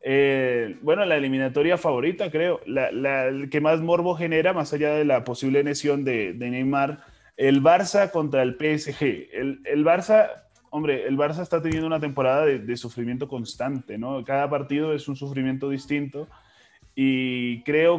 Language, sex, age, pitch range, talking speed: Spanish, male, 20-39, 130-155 Hz, 165 wpm